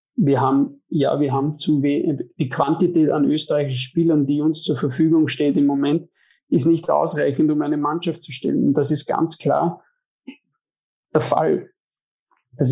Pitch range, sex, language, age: 140-160 Hz, male, German, 50-69